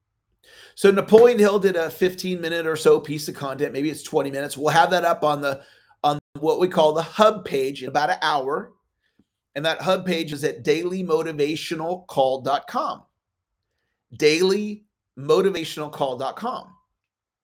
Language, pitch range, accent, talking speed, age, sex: English, 150-210 Hz, American, 140 wpm, 40-59, male